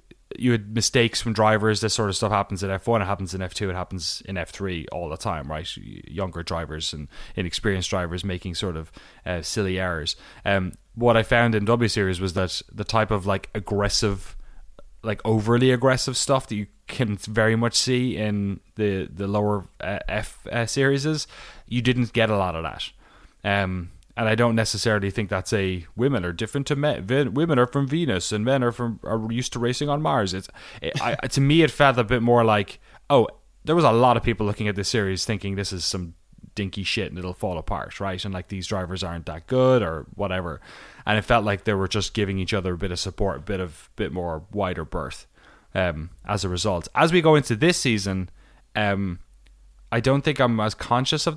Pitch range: 95-120 Hz